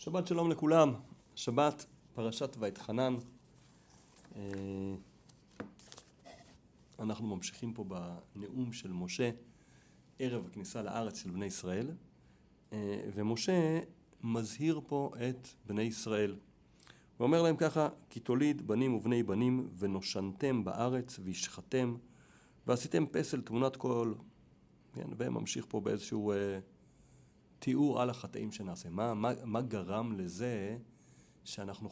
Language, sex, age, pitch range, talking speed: Hebrew, male, 40-59, 100-130 Hz, 100 wpm